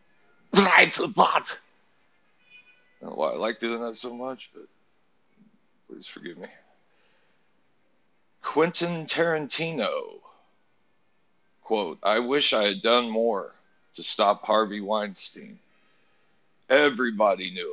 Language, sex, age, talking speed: English, male, 50-69, 100 wpm